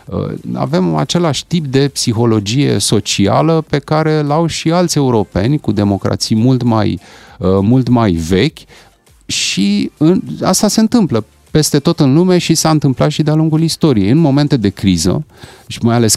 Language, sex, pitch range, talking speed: Romanian, male, 105-150 Hz, 150 wpm